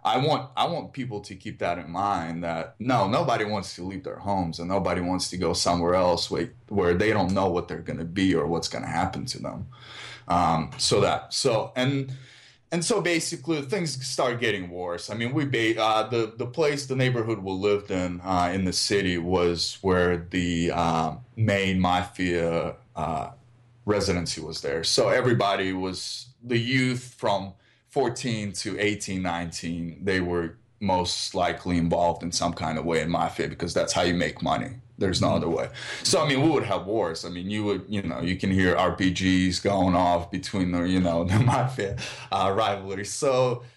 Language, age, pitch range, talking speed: English, 20-39, 85-120 Hz, 190 wpm